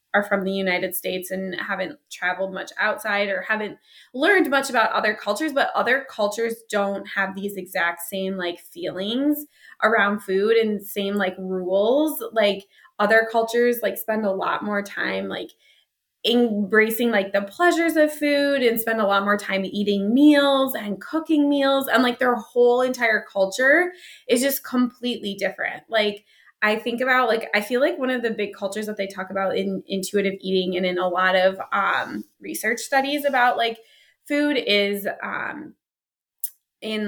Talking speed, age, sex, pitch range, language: 165 wpm, 20-39, female, 200-255 Hz, English